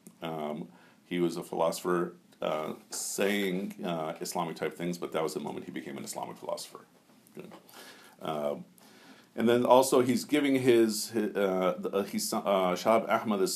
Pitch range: 85-110 Hz